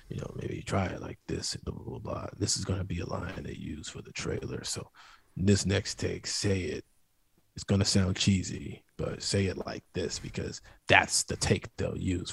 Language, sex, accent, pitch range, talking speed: English, male, American, 100-125 Hz, 220 wpm